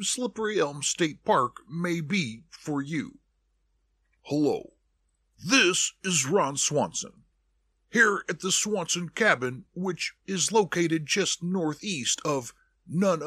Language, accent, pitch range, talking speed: English, American, 145-195 Hz, 115 wpm